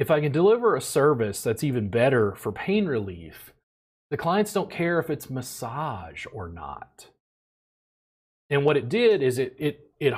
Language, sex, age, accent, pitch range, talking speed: English, male, 30-49, American, 105-135 Hz, 170 wpm